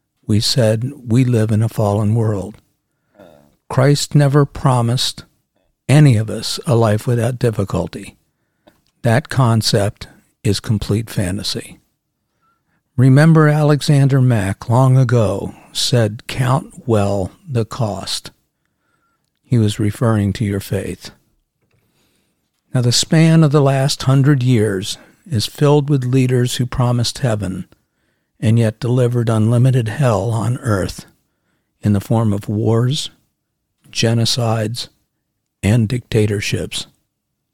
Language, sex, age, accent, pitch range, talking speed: English, male, 50-69, American, 110-135 Hz, 110 wpm